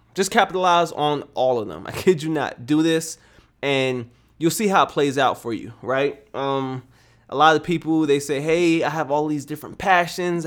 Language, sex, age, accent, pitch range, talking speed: Italian, male, 20-39, American, 130-160 Hz, 205 wpm